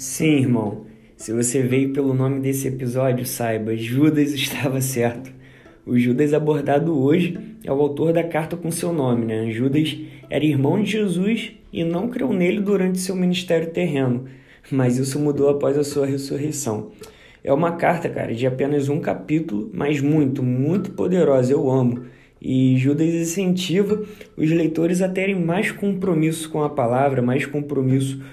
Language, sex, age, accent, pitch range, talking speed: Portuguese, male, 20-39, Brazilian, 130-165 Hz, 155 wpm